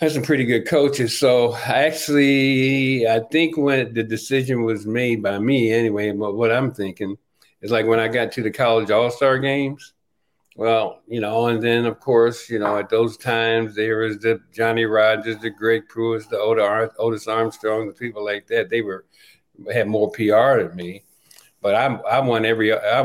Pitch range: 105-115 Hz